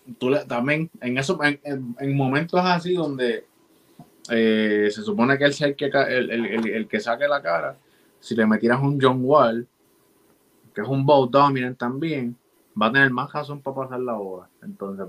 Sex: male